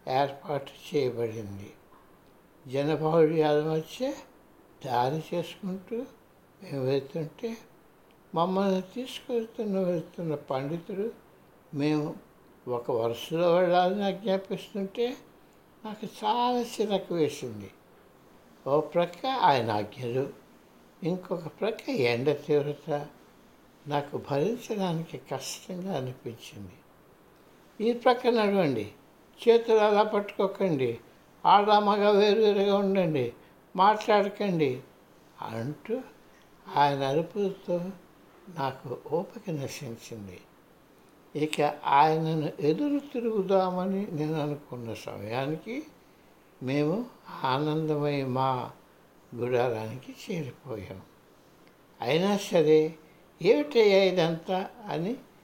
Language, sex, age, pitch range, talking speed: Telugu, male, 60-79, 140-200 Hz, 70 wpm